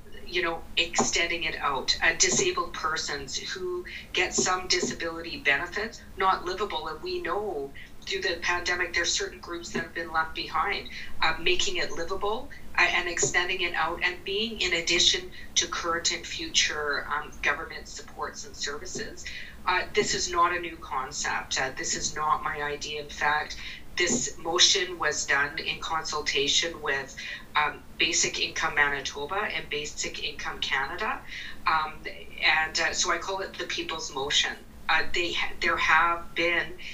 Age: 40-59